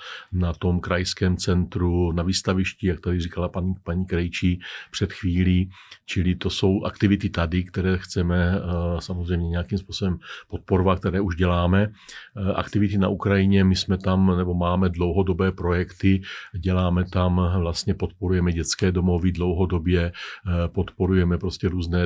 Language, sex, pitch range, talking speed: Czech, male, 85-95 Hz, 130 wpm